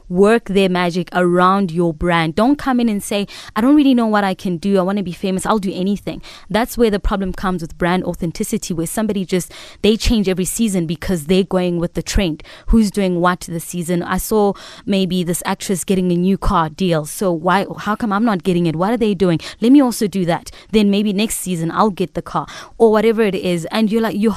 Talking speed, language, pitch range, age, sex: 235 wpm, English, 175-210 Hz, 20-39, female